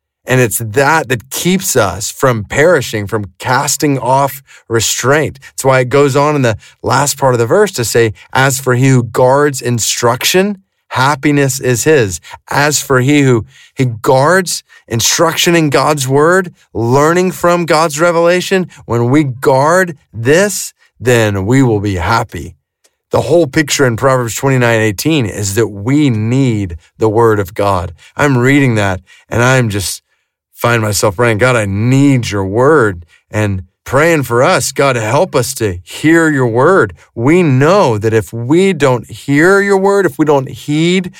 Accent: American